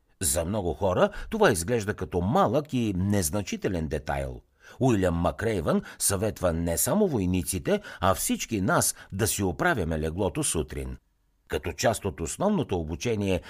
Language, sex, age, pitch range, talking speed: Bulgarian, male, 60-79, 85-130 Hz, 130 wpm